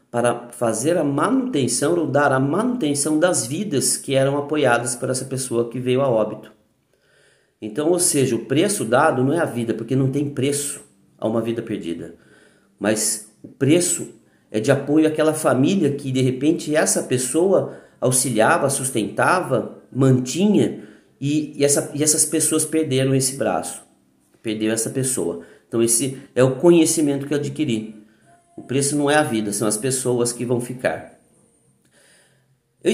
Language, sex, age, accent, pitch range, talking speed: Portuguese, male, 40-59, Brazilian, 120-155 Hz, 160 wpm